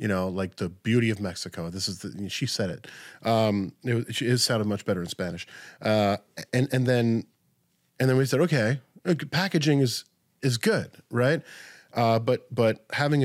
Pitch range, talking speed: 95-125 Hz, 180 wpm